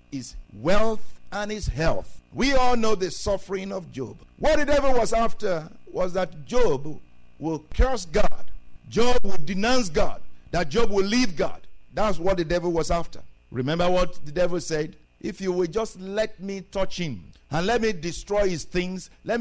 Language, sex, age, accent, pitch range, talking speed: English, male, 50-69, Nigerian, 170-225 Hz, 180 wpm